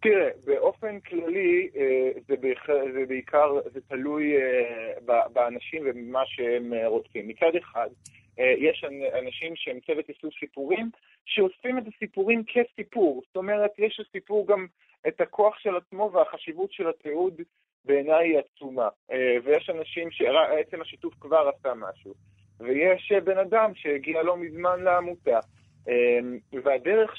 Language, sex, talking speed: Hebrew, male, 115 wpm